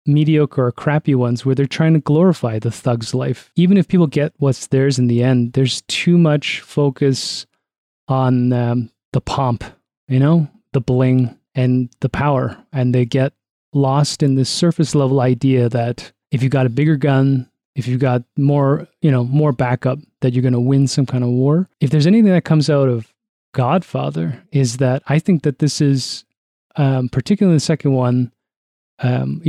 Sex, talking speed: male, 185 wpm